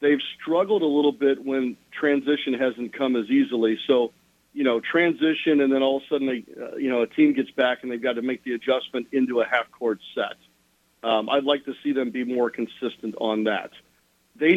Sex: male